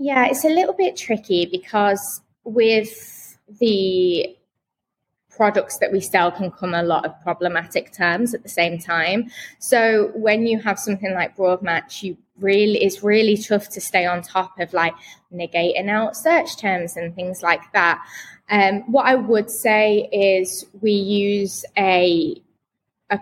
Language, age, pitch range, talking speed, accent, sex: English, 20-39, 175-210 Hz, 160 wpm, British, female